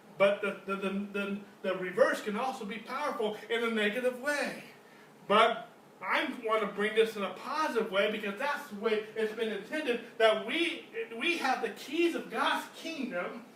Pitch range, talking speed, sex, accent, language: 220-325 Hz, 180 wpm, male, American, English